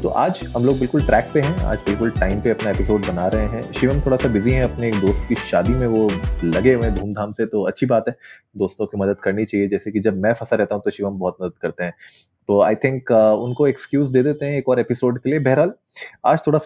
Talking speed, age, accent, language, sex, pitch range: 260 wpm, 30-49, native, Hindi, male, 100-125 Hz